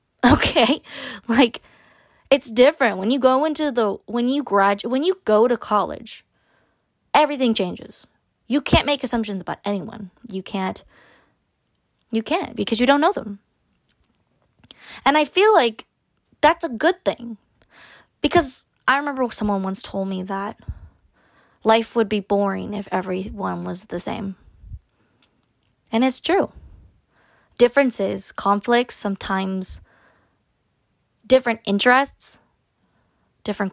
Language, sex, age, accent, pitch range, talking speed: English, female, 20-39, American, 205-280 Hz, 120 wpm